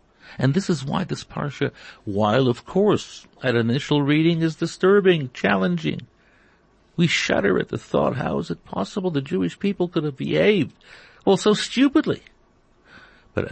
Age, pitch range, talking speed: 60-79, 110-160 Hz, 150 wpm